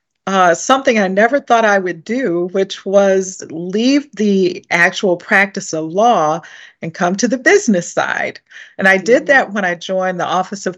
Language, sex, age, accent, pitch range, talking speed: English, female, 40-59, American, 175-215 Hz, 180 wpm